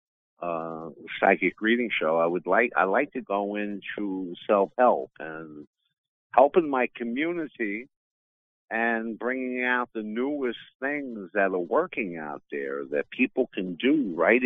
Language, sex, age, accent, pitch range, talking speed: English, male, 50-69, American, 80-110 Hz, 135 wpm